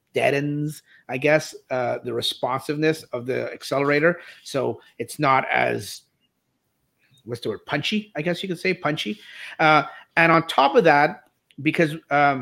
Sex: male